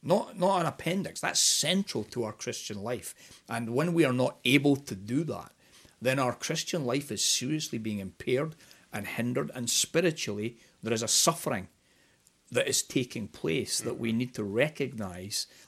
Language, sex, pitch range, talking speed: English, male, 105-130 Hz, 170 wpm